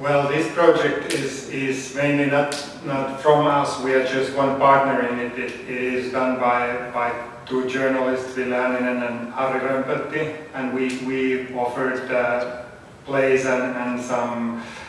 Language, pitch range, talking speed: German, 125-135 Hz, 155 wpm